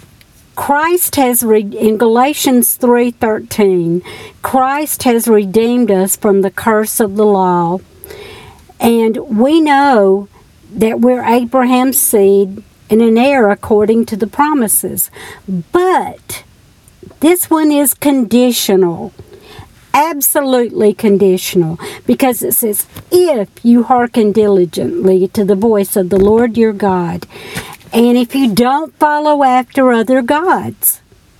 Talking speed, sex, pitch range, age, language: 115 wpm, female, 210-275 Hz, 60-79, English